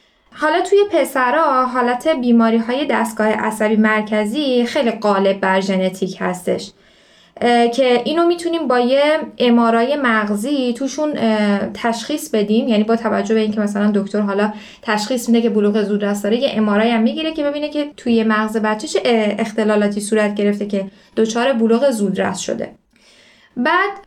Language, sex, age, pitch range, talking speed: Persian, female, 10-29, 215-285 Hz, 140 wpm